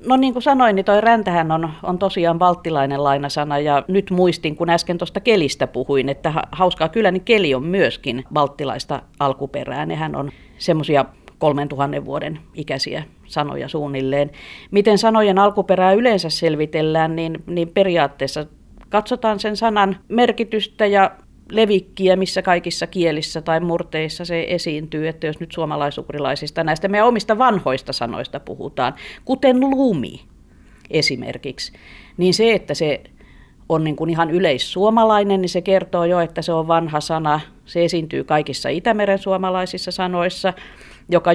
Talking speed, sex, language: 140 wpm, female, Finnish